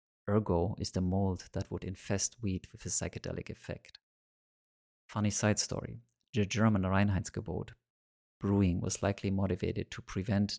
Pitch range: 95-105 Hz